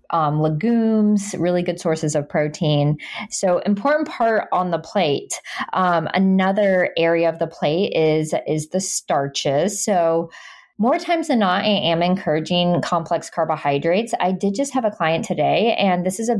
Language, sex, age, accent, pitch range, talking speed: English, female, 20-39, American, 160-205 Hz, 160 wpm